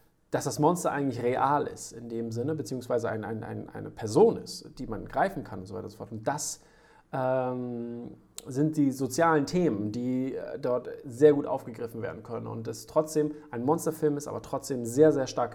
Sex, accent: male, German